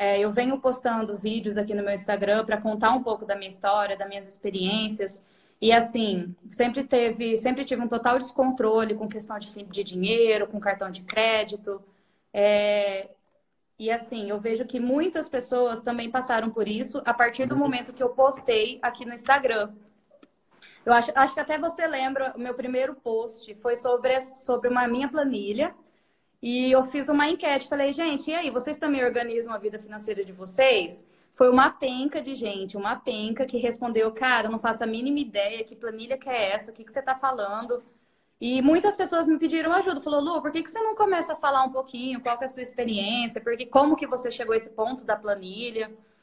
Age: 20-39